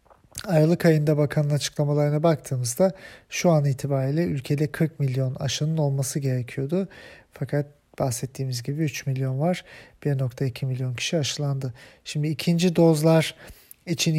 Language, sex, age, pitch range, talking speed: German, male, 40-59, 135-160 Hz, 120 wpm